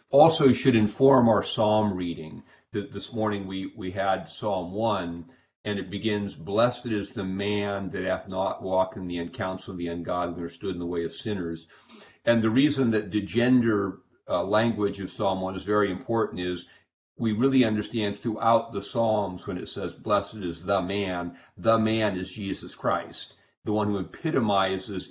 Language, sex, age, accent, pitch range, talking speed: English, male, 50-69, American, 90-110 Hz, 180 wpm